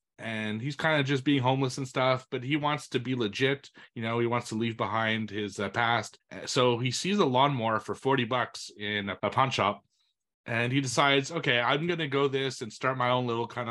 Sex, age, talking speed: male, 30-49, 230 wpm